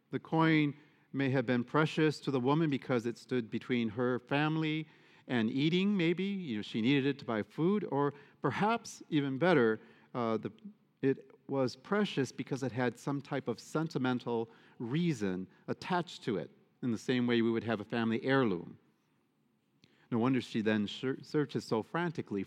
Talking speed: 170 wpm